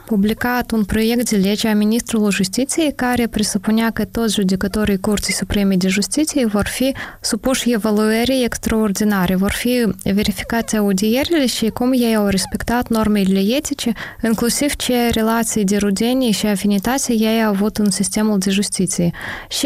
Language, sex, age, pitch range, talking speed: Romanian, female, 20-39, 205-240 Hz, 145 wpm